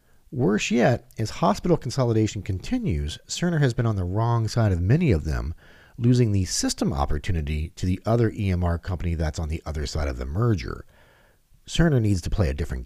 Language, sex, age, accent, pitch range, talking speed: English, male, 40-59, American, 85-130 Hz, 185 wpm